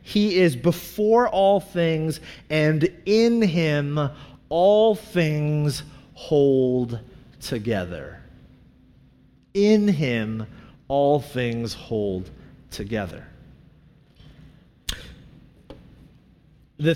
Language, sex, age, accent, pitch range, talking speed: English, male, 30-49, American, 150-205 Hz, 65 wpm